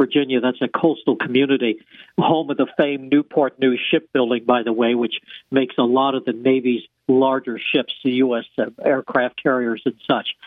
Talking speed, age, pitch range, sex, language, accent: 170 wpm, 60-79, 130-160 Hz, male, English, American